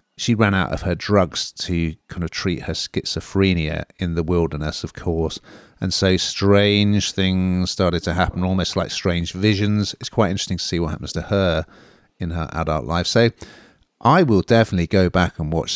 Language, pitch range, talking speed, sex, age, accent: English, 85-105 Hz, 185 wpm, male, 40-59, British